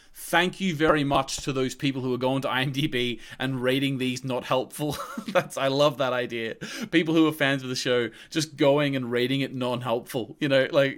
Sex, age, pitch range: male, 30-49, 125-180 Hz